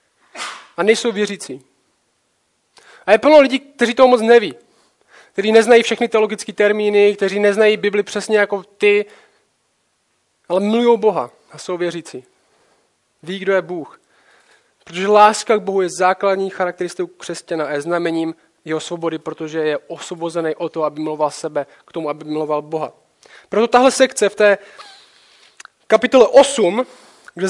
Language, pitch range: Czech, 190-235 Hz